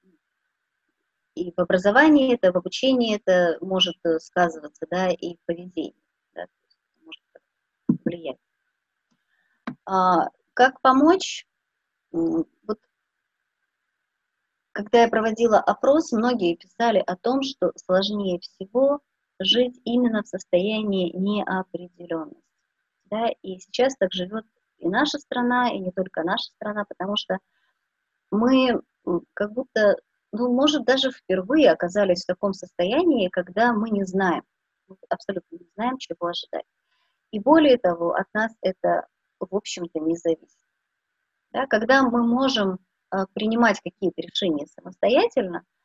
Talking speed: 120 wpm